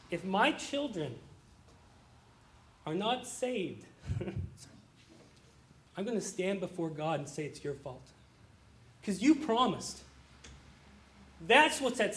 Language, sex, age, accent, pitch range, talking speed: English, male, 40-59, American, 185-265 Hz, 115 wpm